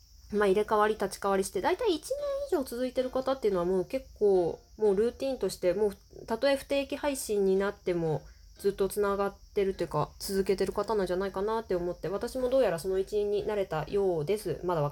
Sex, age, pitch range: female, 20-39, 185-260 Hz